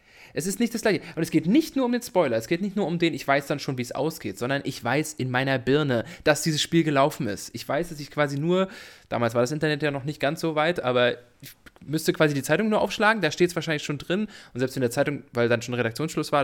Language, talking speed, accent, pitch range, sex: English, 280 wpm, German, 125-175 Hz, male